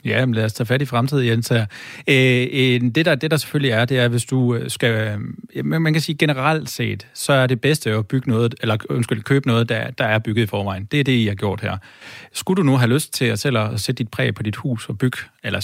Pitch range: 110-130 Hz